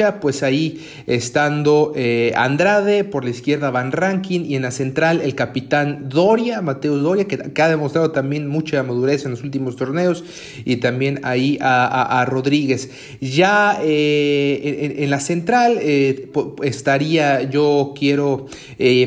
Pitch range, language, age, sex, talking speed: 130-160 Hz, Spanish, 30-49, male, 150 wpm